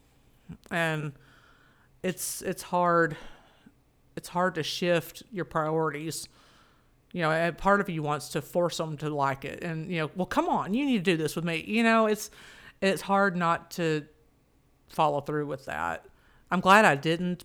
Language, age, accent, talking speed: English, 50-69, American, 175 wpm